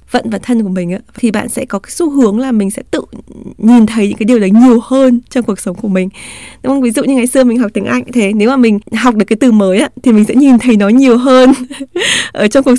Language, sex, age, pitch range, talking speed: Vietnamese, female, 20-39, 205-255 Hz, 290 wpm